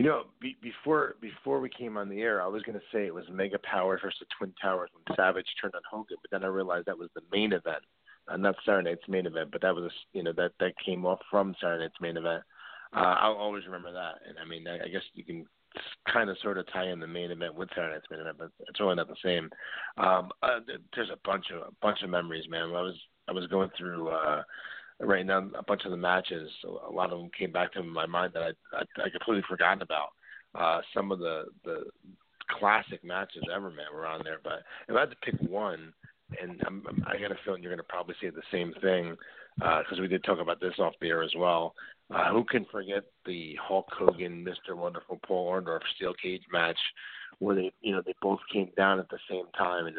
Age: 30-49